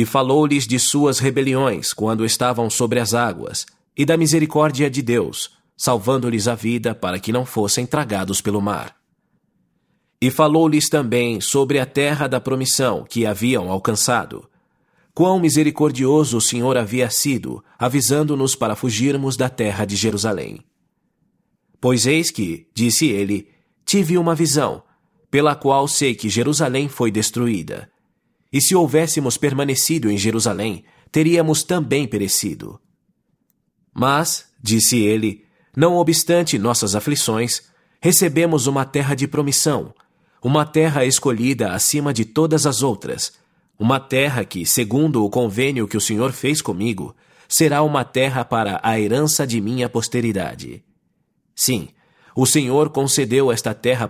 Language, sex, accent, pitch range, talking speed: English, male, Brazilian, 115-150 Hz, 130 wpm